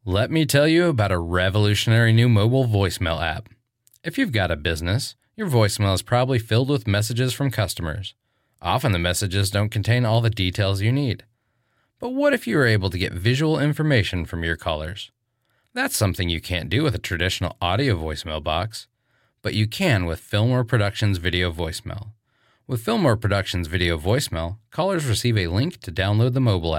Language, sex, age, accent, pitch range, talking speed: English, male, 30-49, American, 90-120 Hz, 180 wpm